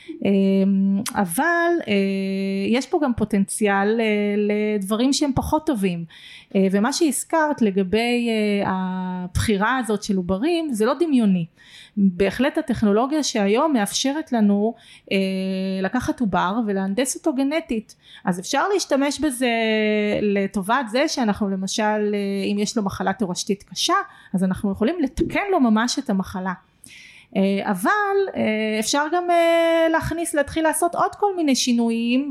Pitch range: 200-265 Hz